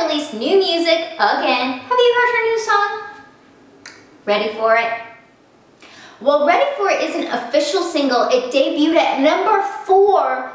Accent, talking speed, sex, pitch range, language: American, 150 wpm, female, 245-355 Hz, English